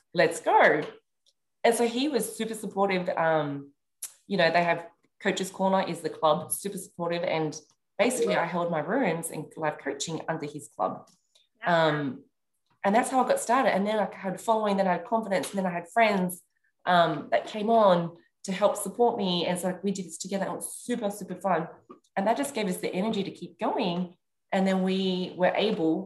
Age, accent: 20-39, Australian